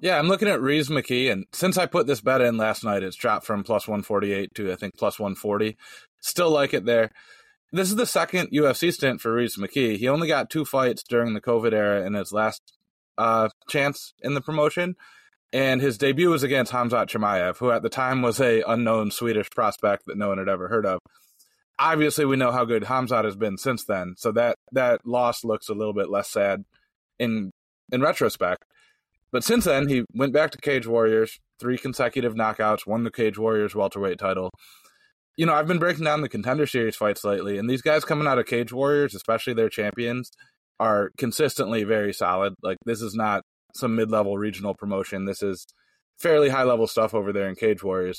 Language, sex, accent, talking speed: English, male, American, 205 wpm